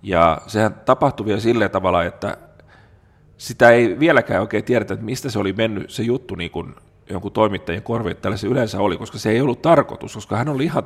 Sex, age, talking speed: male, 40-59, 200 wpm